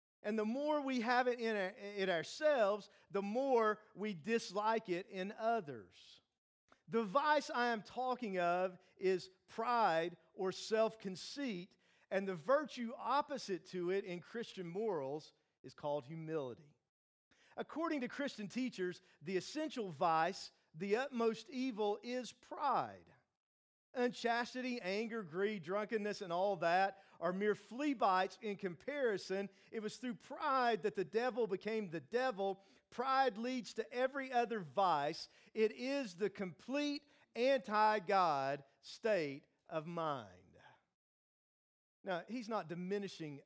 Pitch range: 175-240 Hz